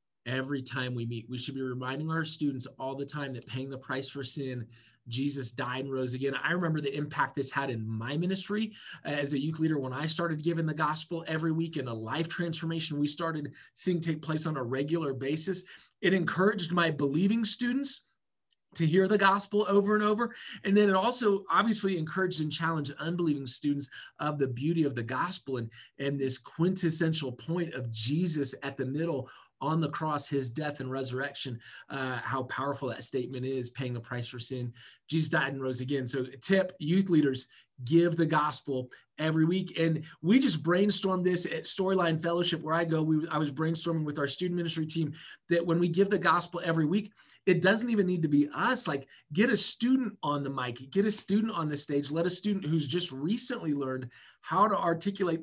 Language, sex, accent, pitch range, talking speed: English, male, American, 135-175 Hz, 200 wpm